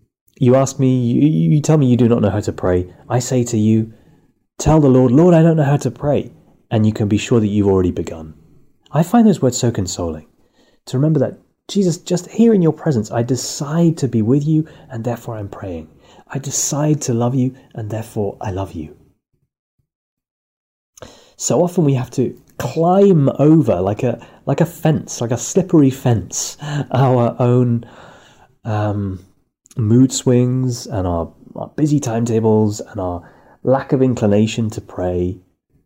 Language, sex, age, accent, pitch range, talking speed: English, male, 30-49, British, 100-140 Hz, 175 wpm